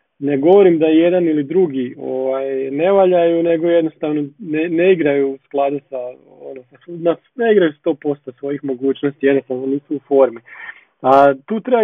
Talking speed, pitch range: 160 wpm, 140-180 Hz